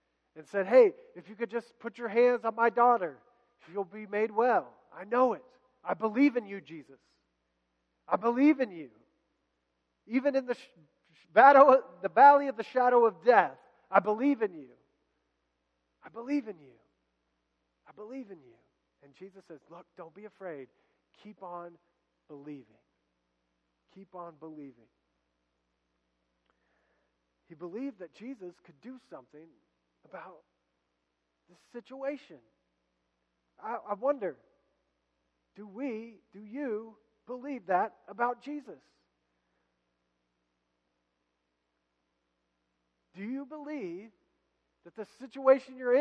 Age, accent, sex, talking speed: 40-59, American, male, 125 wpm